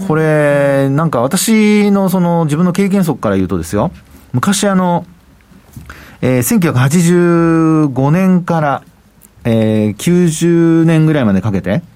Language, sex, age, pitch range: Japanese, male, 40-59, 110-175 Hz